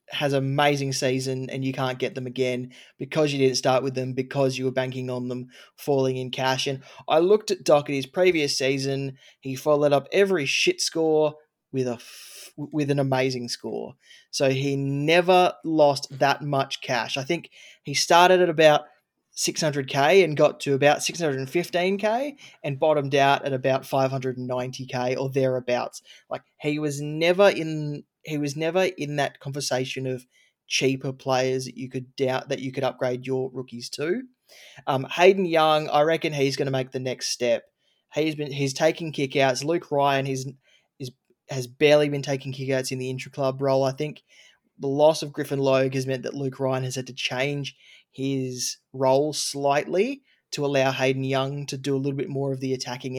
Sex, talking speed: male, 180 wpm